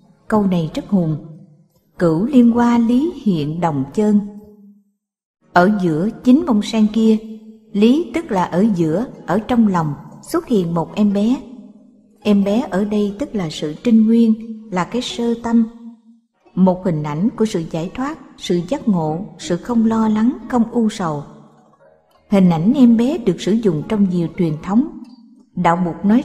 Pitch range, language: 180-235 Hz, Vietnamese